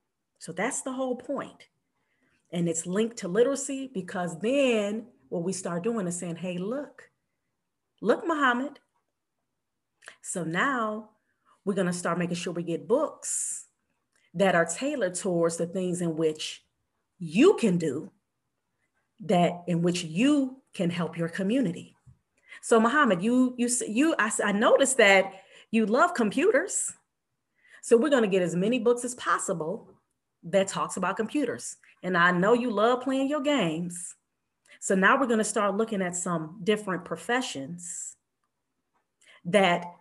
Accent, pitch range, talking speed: American, 175-250 Hz, 140 wpm